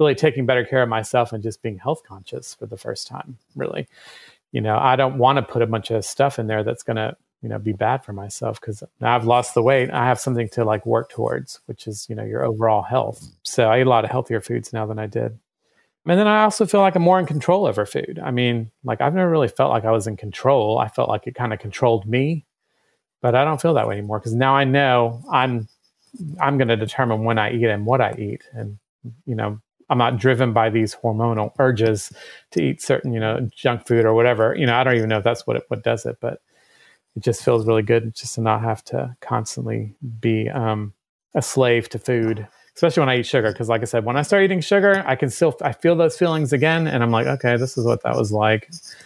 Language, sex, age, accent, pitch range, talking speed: English, male, 40-59, American, 110-135 Hz, 255 wpm